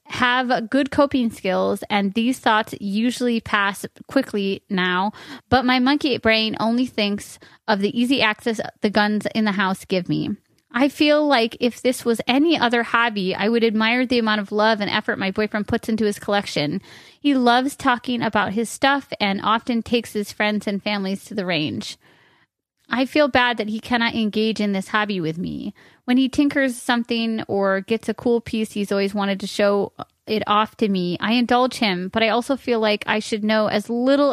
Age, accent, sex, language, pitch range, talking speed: 30-49, American, female, English, 205-245 Hz, 195 wpm